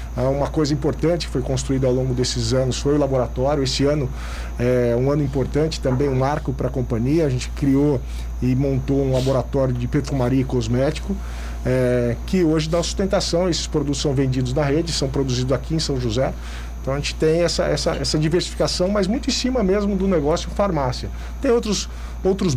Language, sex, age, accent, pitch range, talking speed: Portuguese, male, 50-69, Brazilian, 130-160 Hz, 185 wpm